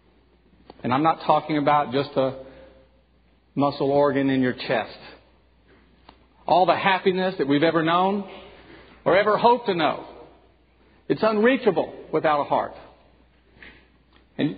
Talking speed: 125 wpm